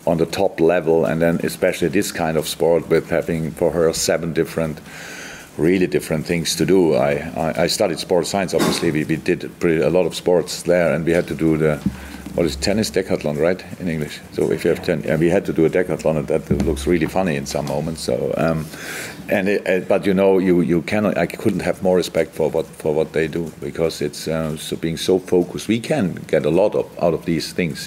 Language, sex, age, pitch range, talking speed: English, male, 50-69, 80-90 Hz, 235 wpm